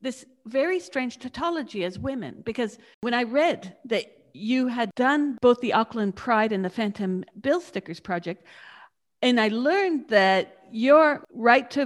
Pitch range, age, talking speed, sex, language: 205-280 Hz, 50-69, 155 wpm, female, English